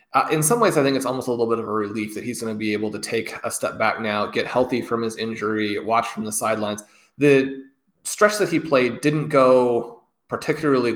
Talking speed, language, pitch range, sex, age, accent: 235 wpm, English, 110-135 Hz, male, 20-39, American